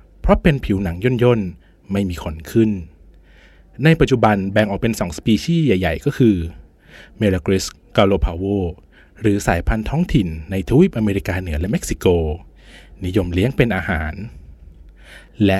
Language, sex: Thai, male